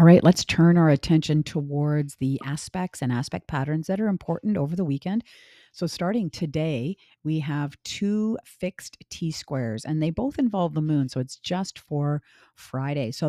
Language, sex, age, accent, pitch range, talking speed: English, female, 50-69, American, 140-180 Hz, 175 wpm